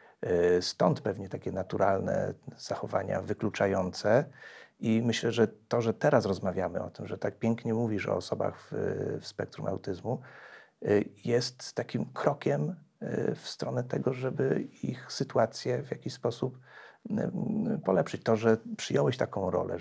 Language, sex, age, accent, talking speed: Polish, male, 40-59, native, 130 wpm